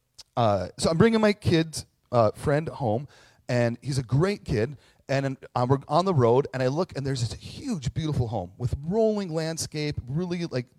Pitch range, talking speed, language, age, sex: 115-155 Hz, 195 wpm, English, 30-49, male